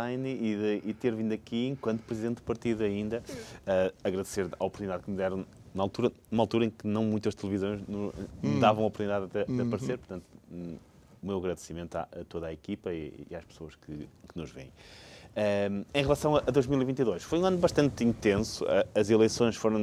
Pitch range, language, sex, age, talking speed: 95-110 Hz, Portuguese, male, 20-39, 195 wpm